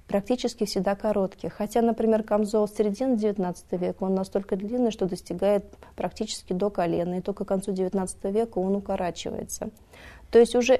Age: 20-39